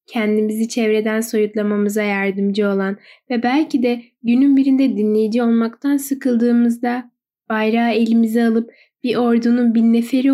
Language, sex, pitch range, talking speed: Turkish, female, 215-275 Hz, 115 wpm